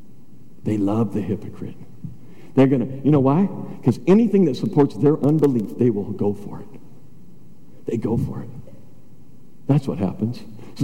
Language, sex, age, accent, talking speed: English, male, 50-69, American, 160 wpm